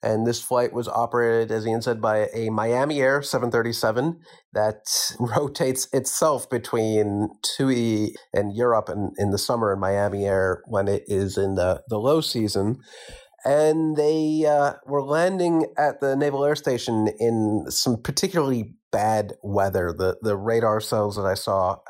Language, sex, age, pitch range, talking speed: English, male, 30-49, 105-140 Hz, 155 wpm